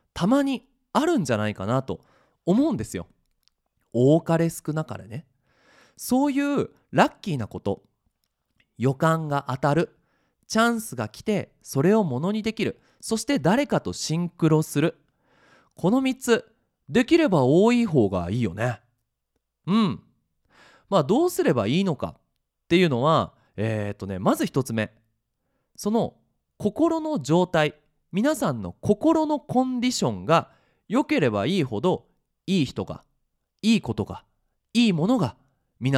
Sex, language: male, Japanese